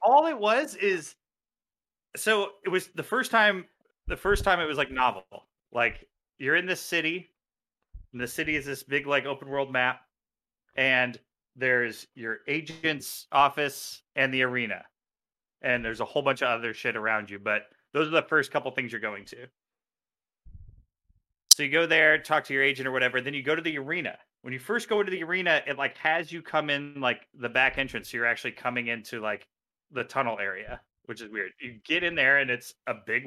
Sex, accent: male, American